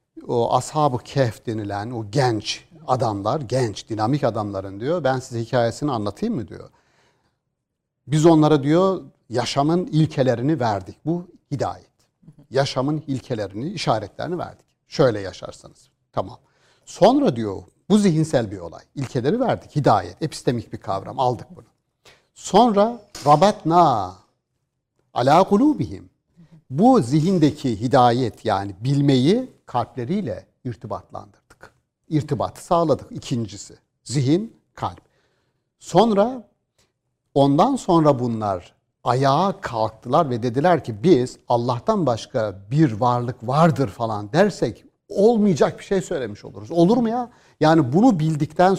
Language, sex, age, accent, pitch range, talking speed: Turkish, male, 60-79, native, 120-165 Hz, 110 wpm